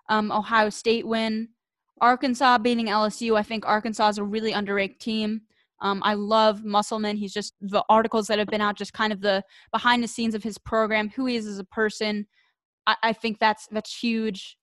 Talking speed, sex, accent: 205 wpm, female, American